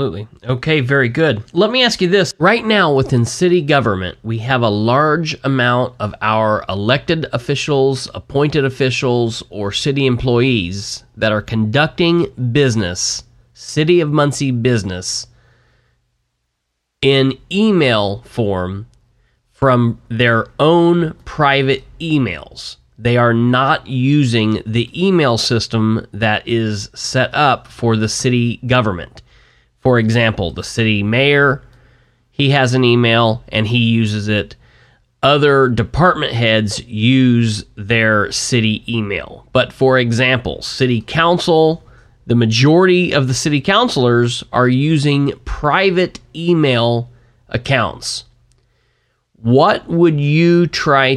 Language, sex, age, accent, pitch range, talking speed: English, male, 30-49, American, 115-140 Hz, 115 wpm